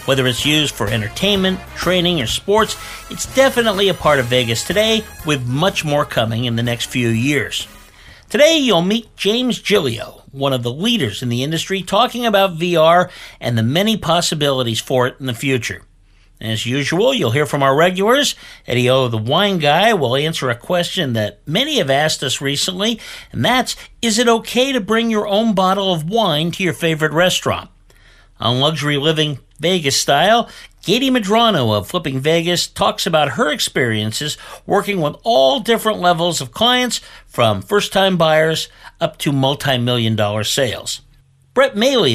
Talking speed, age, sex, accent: 165 wpm, 50-69, male, American